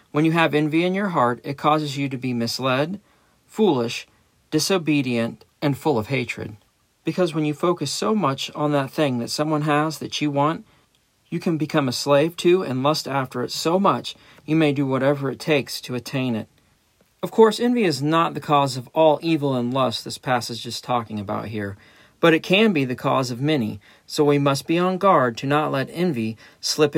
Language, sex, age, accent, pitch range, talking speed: English, male, 40-59, American, 120-150 Hz, 205 wpm